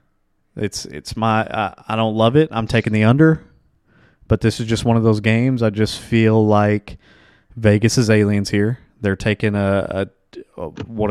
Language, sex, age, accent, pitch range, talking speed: English, male, 20-39, American, 100-115 Hz, 185 wpm